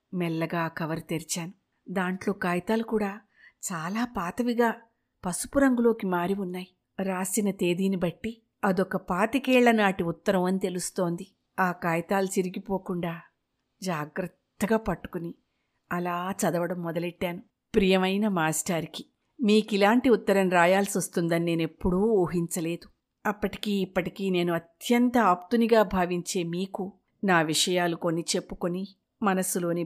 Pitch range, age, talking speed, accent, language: 175-210 Hz, 50-69, 100 wpm, native, Telugu